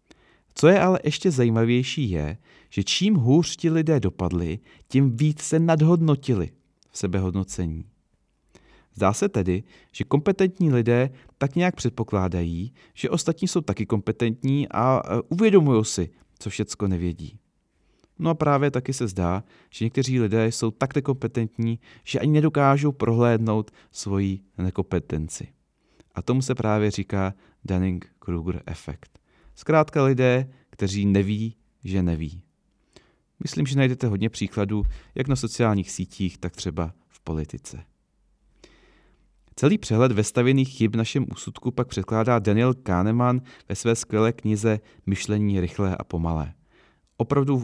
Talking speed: 125 wpm